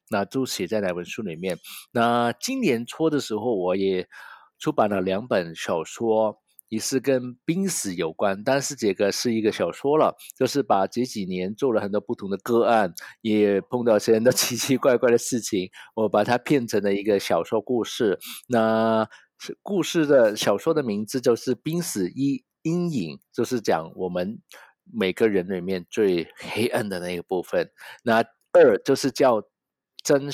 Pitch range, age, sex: 105-135 Hz, 50-69, male